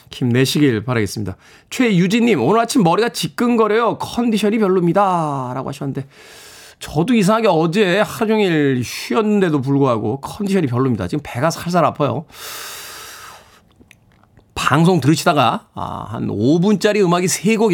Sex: male